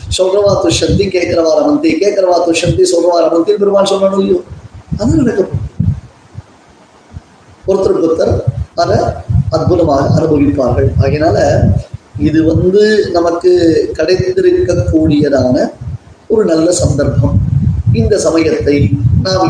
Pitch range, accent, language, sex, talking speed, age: 135-185 Hz, native, Tamil, male, 70 wpm, 20-39